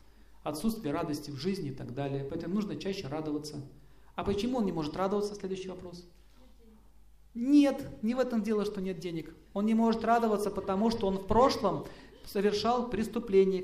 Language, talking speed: Russian, 165 wpm